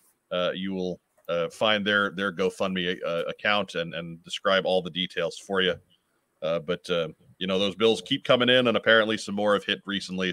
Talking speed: 205 wpm